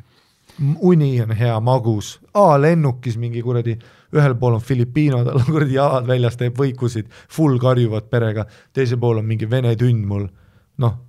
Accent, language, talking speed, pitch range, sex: Finnish, English, 155 wpm, 115-140 Hz, male